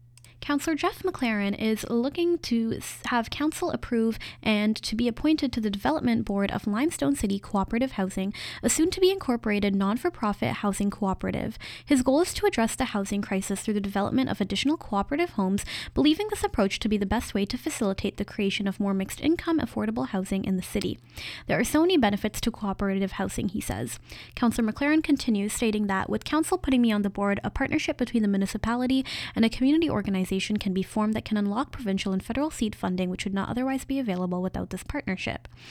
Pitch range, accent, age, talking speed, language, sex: 195-265 Hz, American, 10-29, 190 wpm, English, female